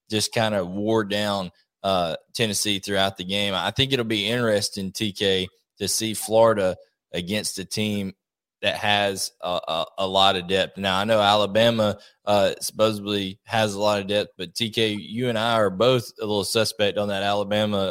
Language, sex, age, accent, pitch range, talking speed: English, male, 20-39, American, 100-115 Hz, 180 wpm